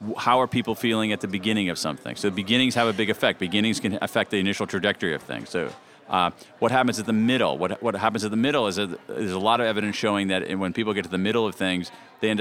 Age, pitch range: 40-59, 100-130 Hz